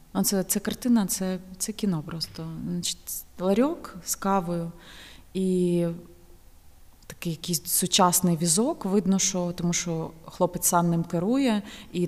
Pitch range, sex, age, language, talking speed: 170-210 Hz, female, 30-49, Ukrainian, 125 wpm